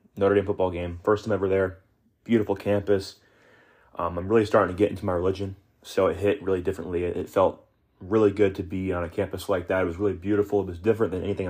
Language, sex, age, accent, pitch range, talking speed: English, male, 30-49, American, 90-100 Hz, 235 wpm